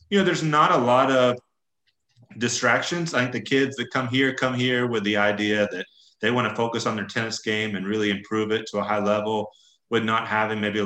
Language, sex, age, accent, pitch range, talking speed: English, male, 30-49, American, 105-120 Hz, 225 wpm